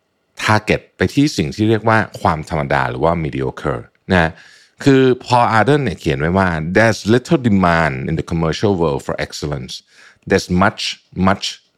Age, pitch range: 60-79, 85-135 Hz